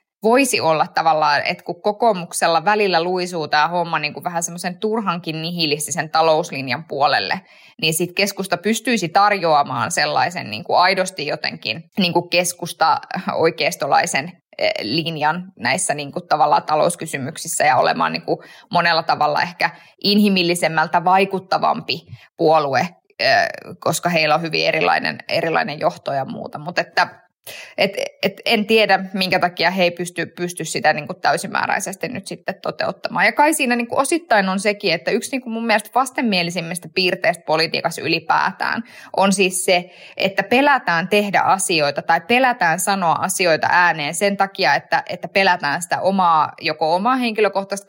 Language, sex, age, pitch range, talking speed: Finnish, female, 20-39, 165-210 Hz, 140 wpm